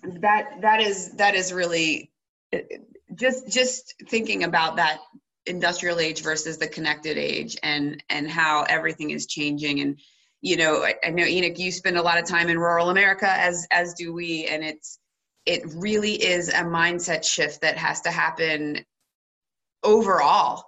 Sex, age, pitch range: female, 20-39, 155-180 Hz